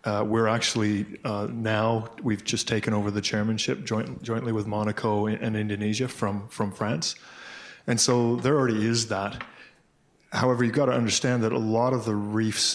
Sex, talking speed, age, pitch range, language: male, 175 wpm, 20-39, 110-125 Hz, English